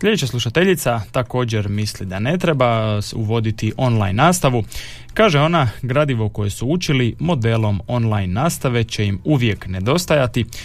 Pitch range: 100-135 Hz